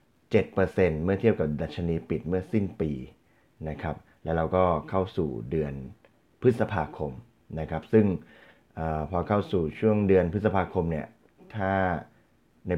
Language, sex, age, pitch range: Thai, male, 20-39, 80-95 Hz